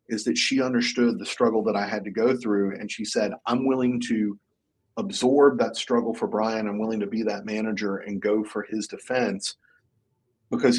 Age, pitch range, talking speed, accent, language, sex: 40-59, 110-150 Hz, 195 wpm, American, English, male